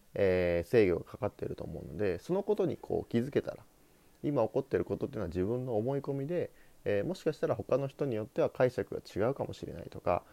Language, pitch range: Japanese, 95-140 Hz